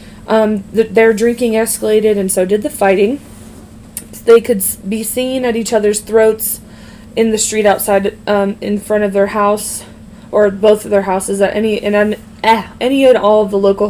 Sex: female